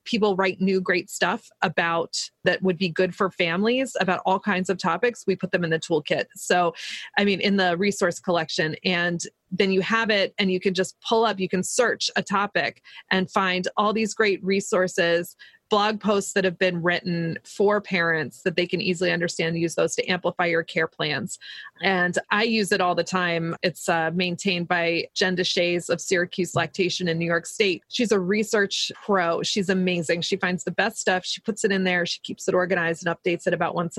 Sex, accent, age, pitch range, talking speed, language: female, American, 30-49, 175-200 Hz, 205 wpm, English